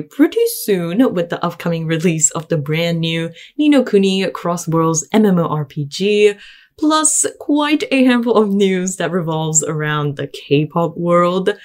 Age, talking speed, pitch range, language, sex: 10-29, 150 wpm, 160-230 Hz, English, female